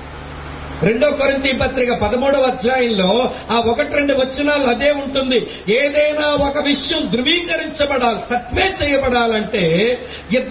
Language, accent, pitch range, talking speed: English, Indian, 210-270 Hz, 115 wpm